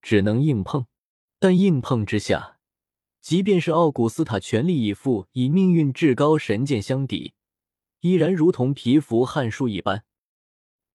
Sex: male